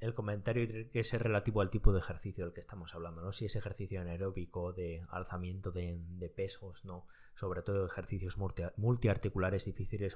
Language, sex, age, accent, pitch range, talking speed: Spanish, male, 20-39, Spanish, 90-105 Hz, 170 wpm